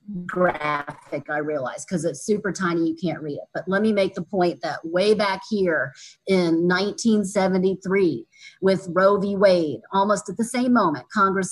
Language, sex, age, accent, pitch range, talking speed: English, female, 40-59, American, 165-210 Hz, 170 wpm